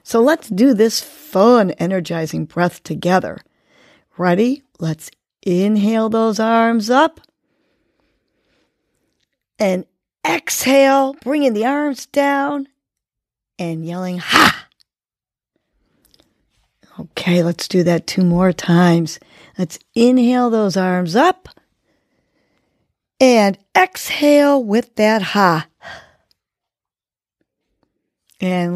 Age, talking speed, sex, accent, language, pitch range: 40-59, 85 wpm, female, American, English, 175-245 Hz